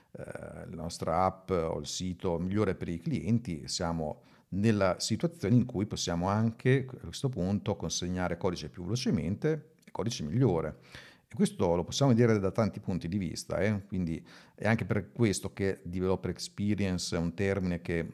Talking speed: 165 wpm